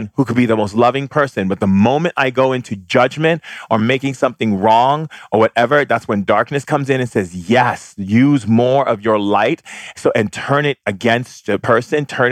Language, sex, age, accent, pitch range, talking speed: English, male, 40-59, American, 105-130 Hz, 200 wpm